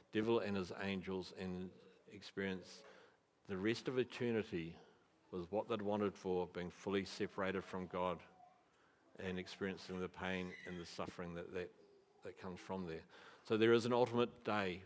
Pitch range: 95-115 Hz